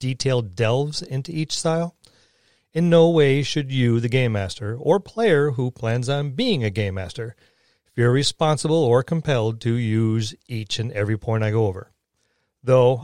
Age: 40-59